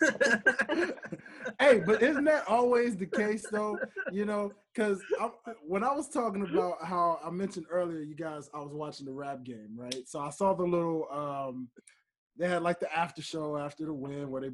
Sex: male